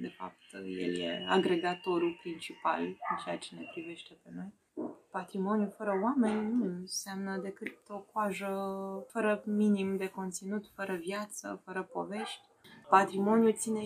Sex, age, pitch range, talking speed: female, 20-39, 165-205 Hz, 135 wpm